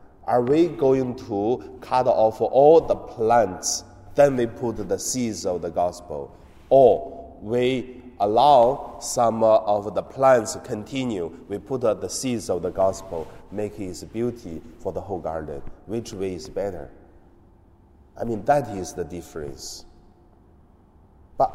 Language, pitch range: Chinese, 85-115 Hz